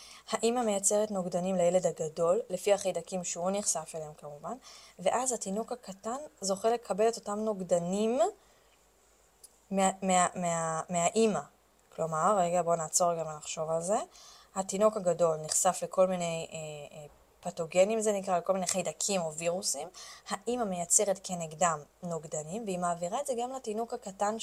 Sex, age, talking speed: female, 20-39, 140 wpm